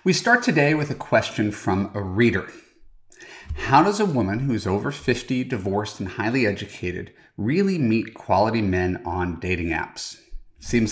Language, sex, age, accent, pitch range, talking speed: English, male, 30-49, American, 95-125 Hz, 160 wpm